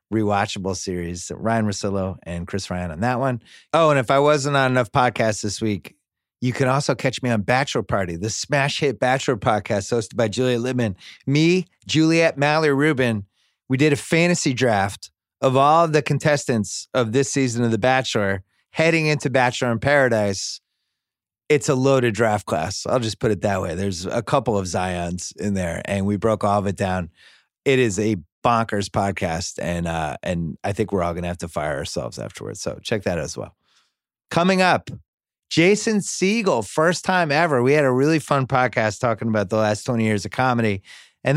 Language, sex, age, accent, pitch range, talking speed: English, male, 30-49, American, 100-145 Hz, 195 wpm